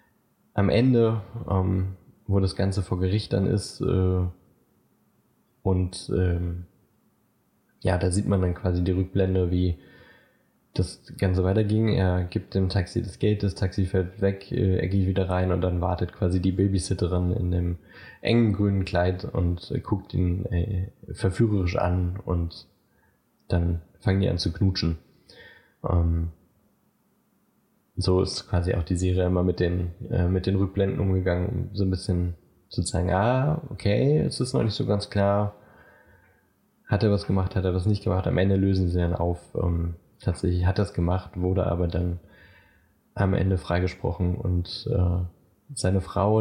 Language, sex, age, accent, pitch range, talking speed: German, male, 20-39, German, 90-100 Hz, 160 wpm